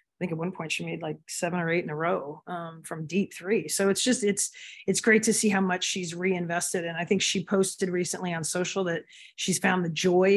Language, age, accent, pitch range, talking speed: English, 30-49, American, 170-195 Hz, 250 wpm